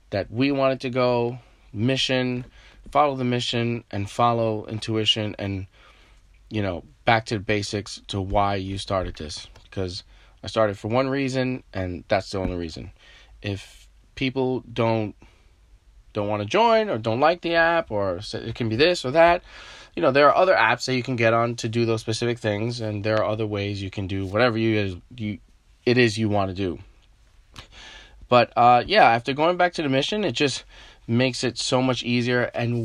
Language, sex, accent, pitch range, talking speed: English, male, American, 100-125 Hz, 190 wpm